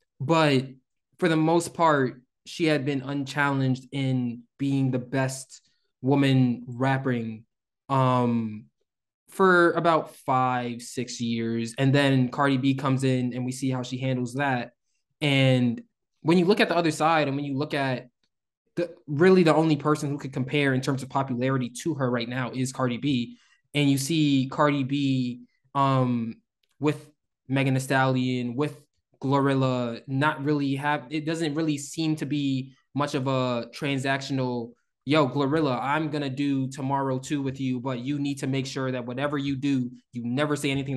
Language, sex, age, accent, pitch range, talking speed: English, male, 20-39, American, 130-150 Hz, 165 wpm